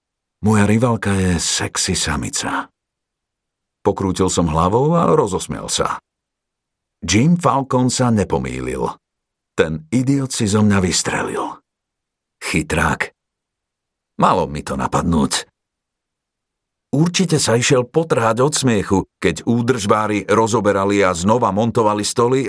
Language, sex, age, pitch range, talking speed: Slovak, male, 50-69, 95-130 Hz, 105 wpm